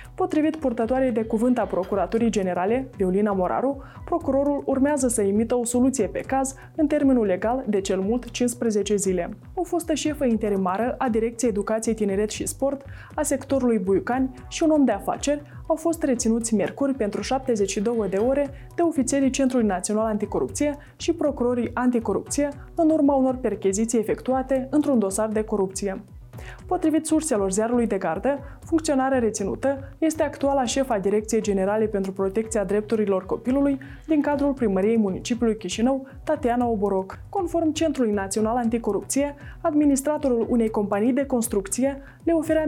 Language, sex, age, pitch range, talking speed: Romanian, female, 20-39, 210-280 Hz, 145 wpm